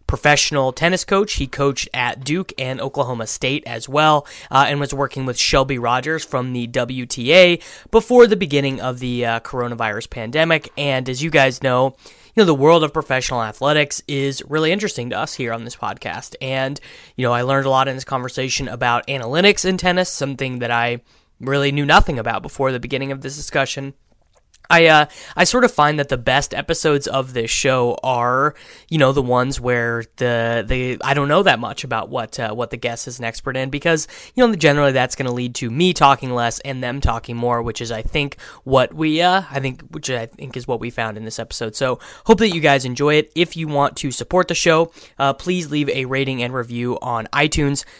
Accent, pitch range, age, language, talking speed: American, 125-150 Hz, 20-39, English, 215 wpm